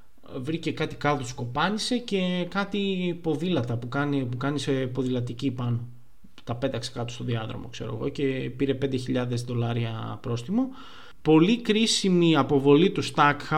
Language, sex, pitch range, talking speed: Greek, male, 125-170 Hz, 135 wpm